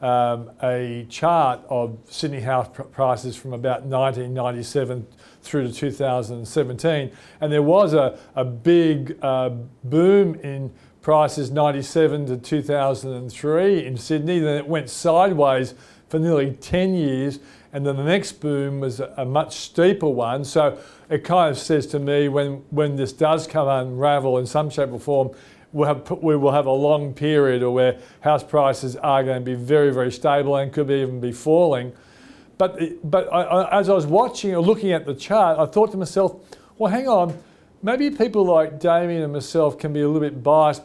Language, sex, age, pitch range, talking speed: English, male, 40-59, 130-160 Hz, 175 wpm